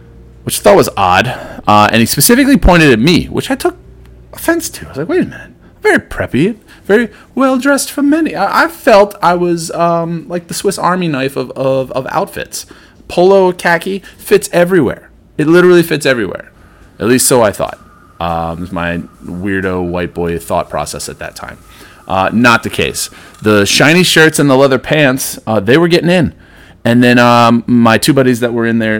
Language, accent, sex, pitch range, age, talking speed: English, American, male, 90-140 Hz, 30-49, 195 wpm